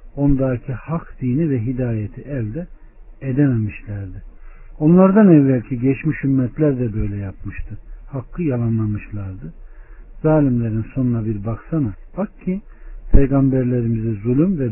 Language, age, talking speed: Turkish, 60-79, 100 wpm